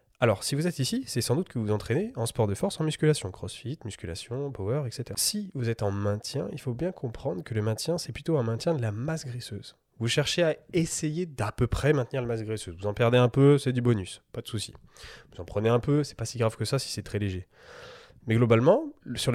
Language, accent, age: French, French, 20-39